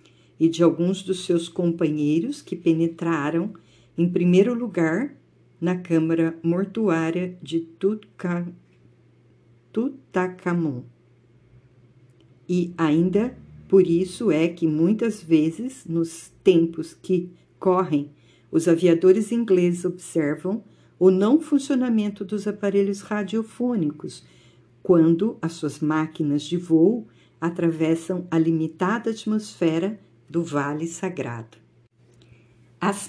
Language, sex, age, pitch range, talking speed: Portuguese, female, 50-69, 150-190 Hz, 95 wpm